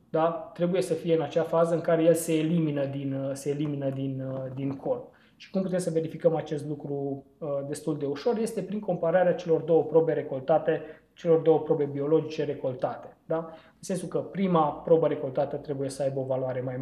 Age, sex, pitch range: 20-39, male, 145-170 Hz